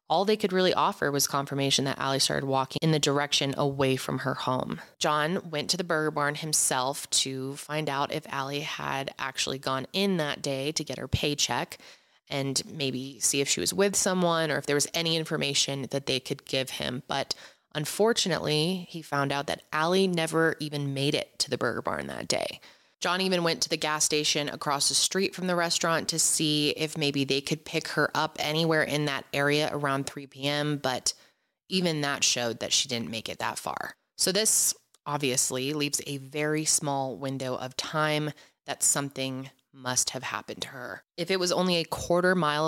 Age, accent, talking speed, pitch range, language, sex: 20-39, American, 195 wpm, 135-165 Hz, English, female